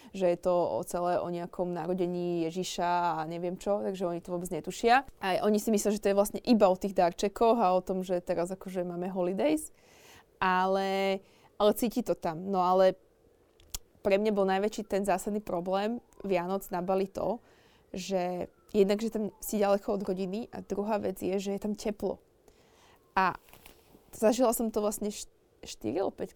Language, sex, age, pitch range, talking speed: Slovak, female, 20-39, 185-210 Hz, 175 wpm